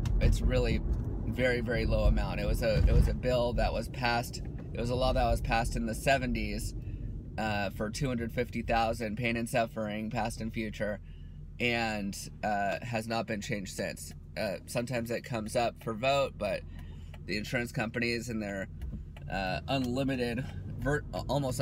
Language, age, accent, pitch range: English, 30-49, American, 105-125 Hz